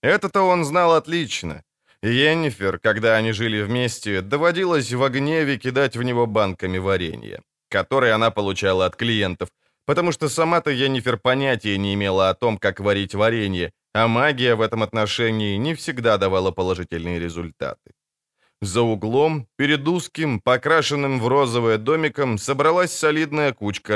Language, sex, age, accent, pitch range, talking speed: Ukrainian, male, 20-39, native, 105-150 Hz, 140 wpm